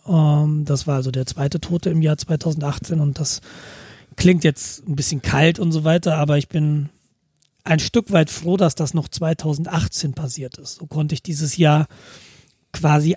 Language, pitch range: German, 145-170 Hz